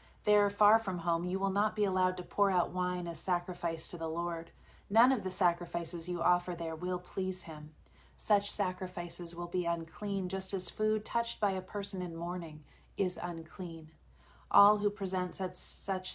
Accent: American